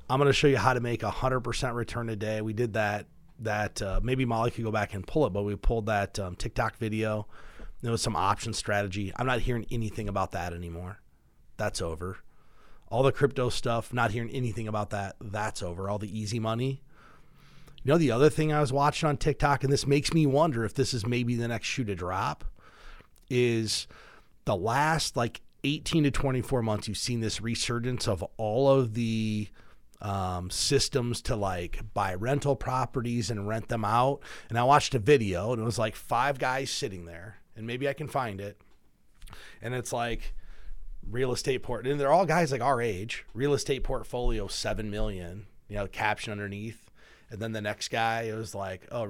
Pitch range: 105-130 Hz